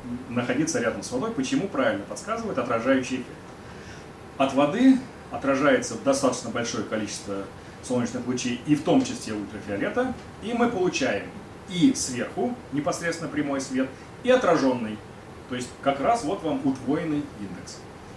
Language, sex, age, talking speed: Russian, male, 30-49, 130 wpm